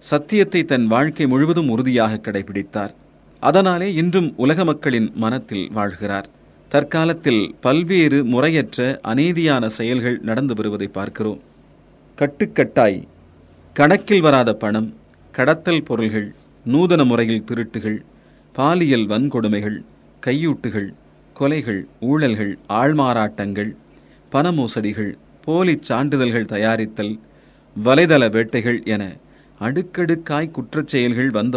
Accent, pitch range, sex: native, 110-150 Hz, male